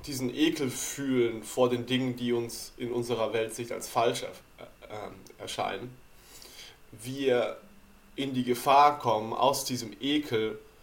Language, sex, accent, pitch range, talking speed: German, male, German, 120-135 Hz, 120 wpm